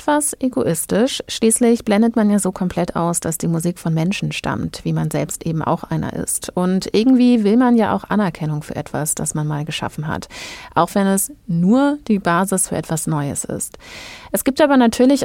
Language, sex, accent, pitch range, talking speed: German, female, German, 170-230 Hz, 195 wpm